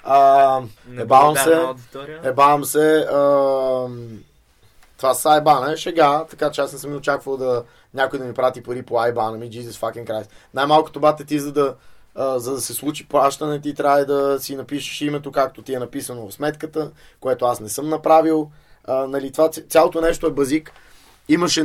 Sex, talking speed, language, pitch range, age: male, 185 wpm, Bulgarian, 125-145 Hz, 20-39